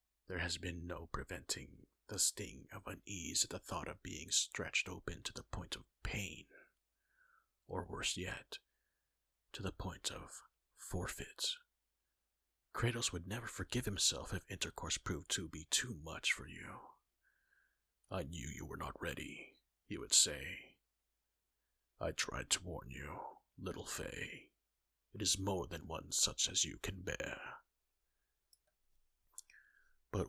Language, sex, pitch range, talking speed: English, male, 85-100 Hz, 140 wpm